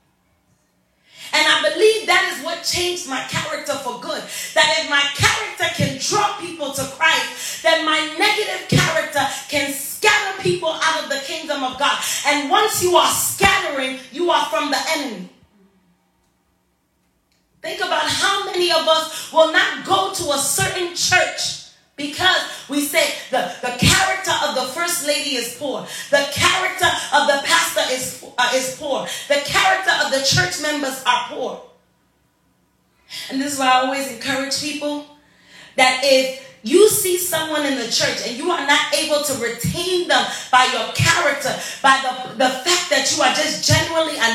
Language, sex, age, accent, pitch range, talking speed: English, female, 30-49, American, 270-340 Hz, 165 wpm